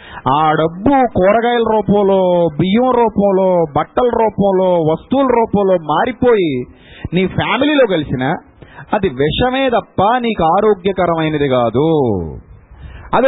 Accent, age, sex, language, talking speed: native, 30-49, male, Telugu, 95 wpm